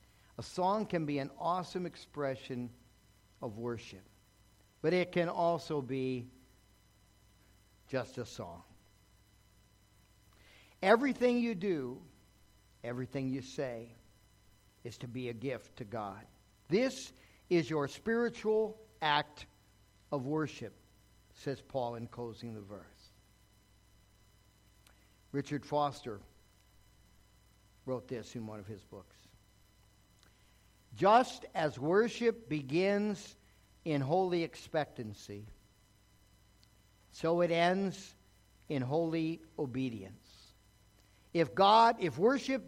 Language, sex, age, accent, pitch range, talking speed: English, male, 50-69, American, 100-155 Hz, 95 wpm